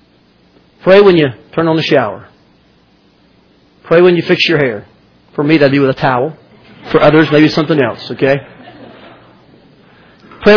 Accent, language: American, English